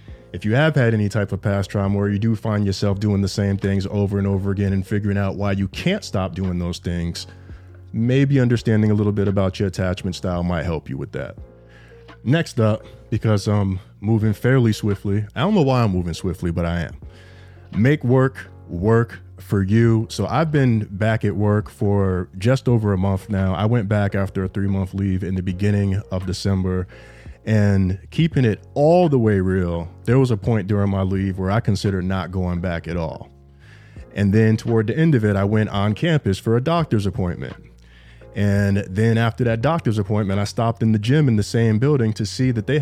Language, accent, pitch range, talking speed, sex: English, American, 95-120 Hz, 210 wpm, male